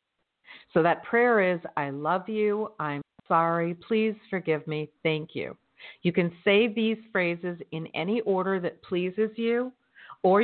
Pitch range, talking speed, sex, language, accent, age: 165-220 Hz, 150 wpm, female, English, American, 50-69